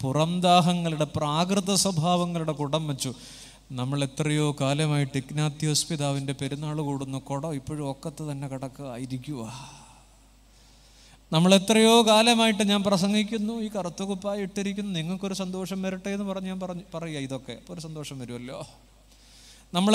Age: 20-39